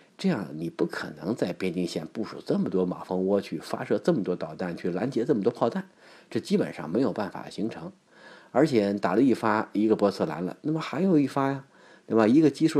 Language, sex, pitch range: Chinese, male, 90-115 Hz